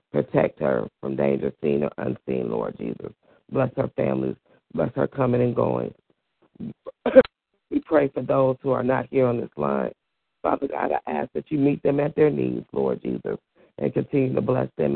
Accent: American